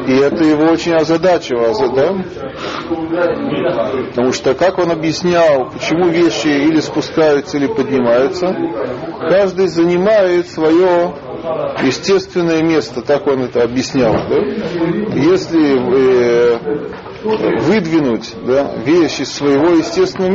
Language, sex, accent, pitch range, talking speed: Russian, male, native, 135-165 Hz, 95 wpm